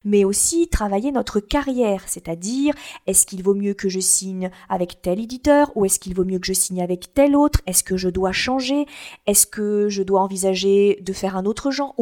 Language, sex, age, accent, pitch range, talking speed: French, female, 40-59, French, 190-245 Hz, 210 wpm